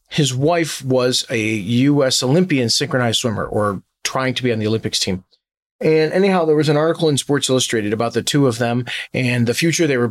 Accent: American